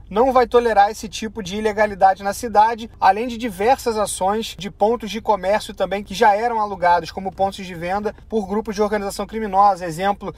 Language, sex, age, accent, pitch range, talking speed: Portuguese, male, 30-49, Brazilian, 195-230 Hz, 185 wpm